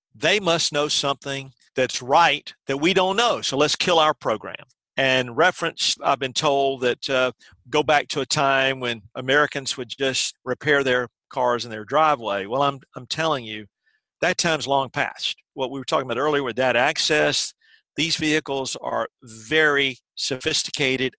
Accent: American